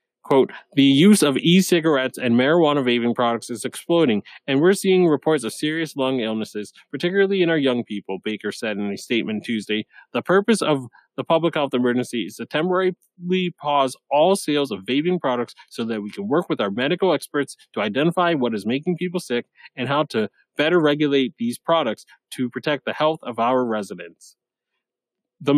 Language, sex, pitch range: English, male, 120-160 Hz